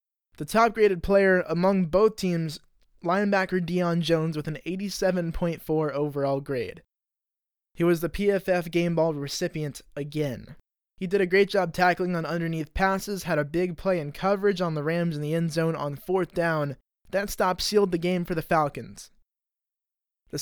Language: English